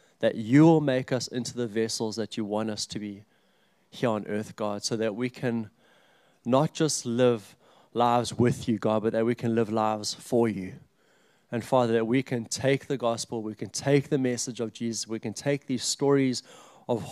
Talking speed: 205 wpm